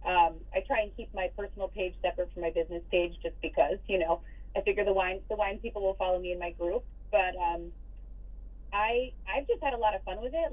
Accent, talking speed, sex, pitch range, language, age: American, 245 wpm, female, 175-215 Hz, English, 30-49